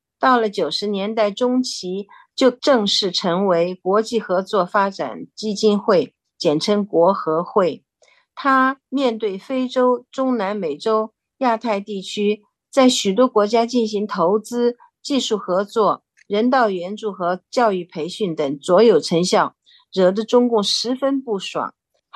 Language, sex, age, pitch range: Chinese, female, 50-69, 185-235 Hz